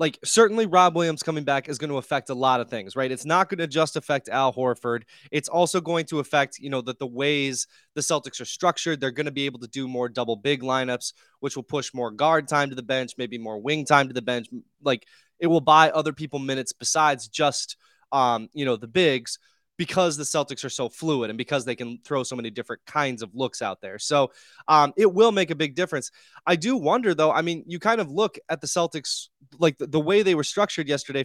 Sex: male